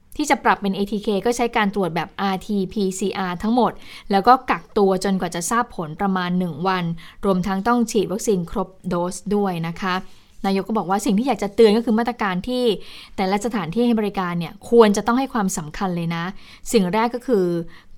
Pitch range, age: 190-235 Hz, 20-39